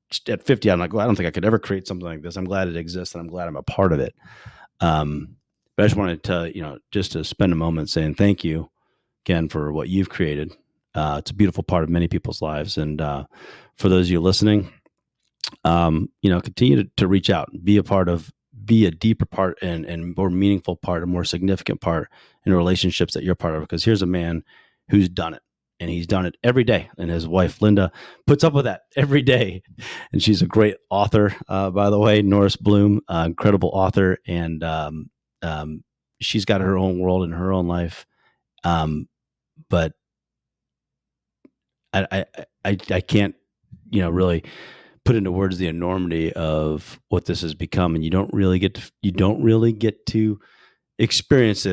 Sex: male